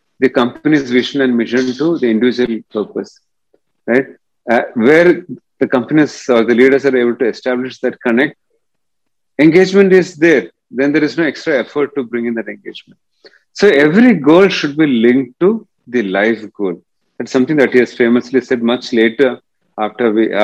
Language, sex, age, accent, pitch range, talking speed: English, male, 40-59, Indian, 115-170 Hz, 165 wpm